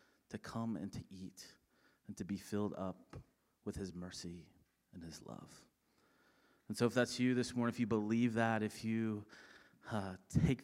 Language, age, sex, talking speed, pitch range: English, 30-49, male, 175 wpm, 90-115 Hz